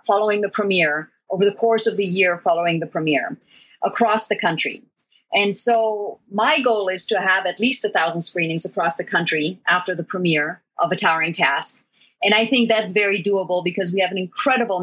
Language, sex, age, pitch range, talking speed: English, female, 30-49, 165-200 Hz, 195 wpm